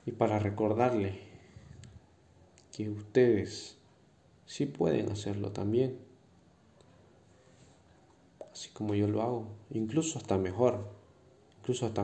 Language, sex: Spanish, male